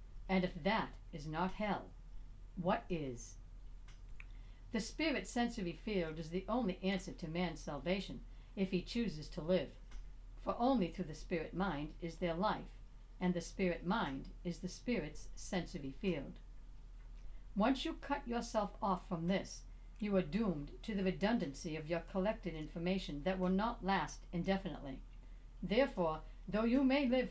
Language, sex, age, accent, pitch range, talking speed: English, female, 60-79, American, 155-205 Hz, 150 wpm